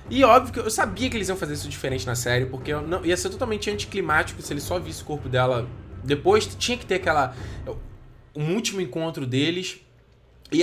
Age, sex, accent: 20-39, male, Brazilian